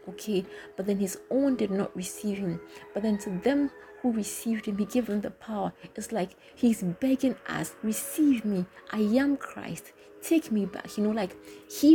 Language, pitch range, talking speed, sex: English, 190-235 Hz, 190 wpm, female